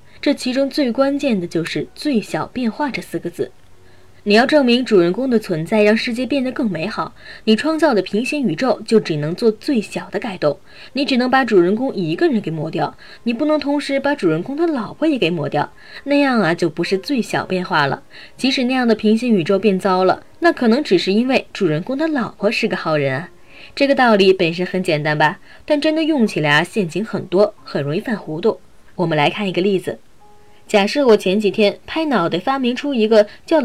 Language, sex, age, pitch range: Chinese, female, 20-39, 185-275 Hz